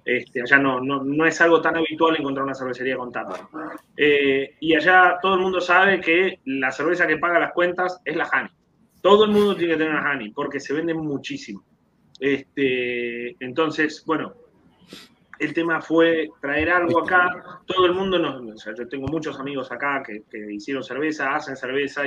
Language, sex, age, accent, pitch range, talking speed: Spanish, male, 20-39, Argentinian, 135-175 Hz, 185 wpm